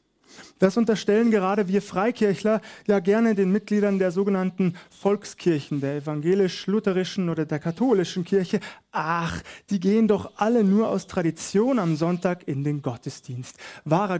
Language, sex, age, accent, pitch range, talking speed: German, male, 30-49, German, 170-215 Hz, 135 wpm